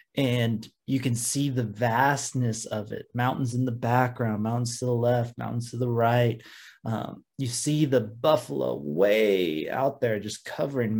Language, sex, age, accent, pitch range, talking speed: English, male, 20-39, American, 115-140 Hz, 165 wpm